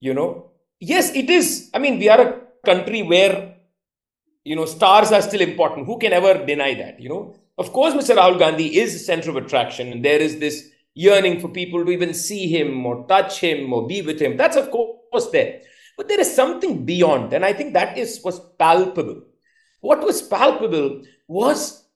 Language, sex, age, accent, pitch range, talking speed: Malayalam, male, 50-69, native, 175-275 Hz, 200 wpm